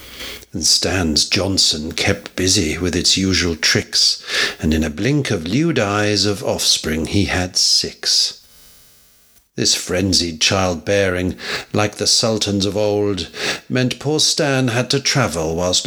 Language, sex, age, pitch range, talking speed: English, male, 60-79, 90-115 Hz, 135 wpm